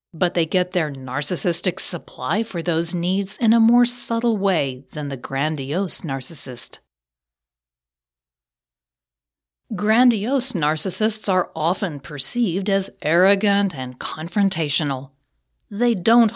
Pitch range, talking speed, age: 145-210 Hz, 105 wpm, 40-59